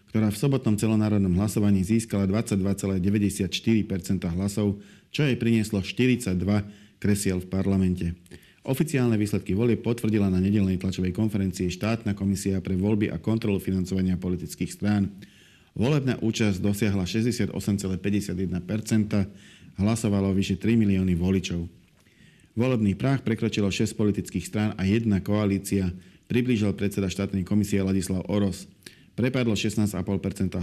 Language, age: Slovak, 40-59